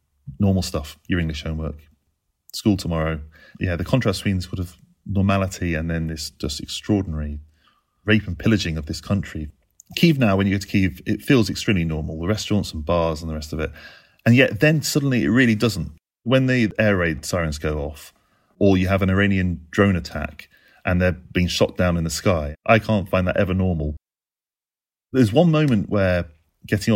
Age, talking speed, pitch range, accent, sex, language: 30-49, 190 wpm, 80-105 Hz, British, male, English